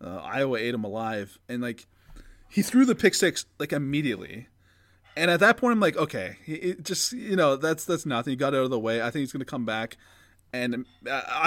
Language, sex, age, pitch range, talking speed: English, male, 20-39, 105-170 Hz, 225 wpm